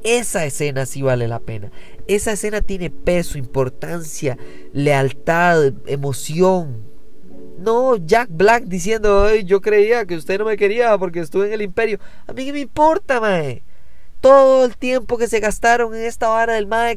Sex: male